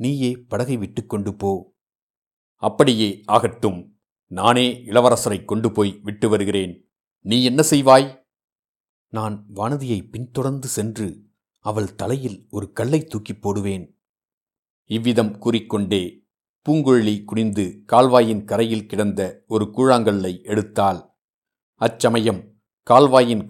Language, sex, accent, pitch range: Tamil, male, native, 105-120 Hz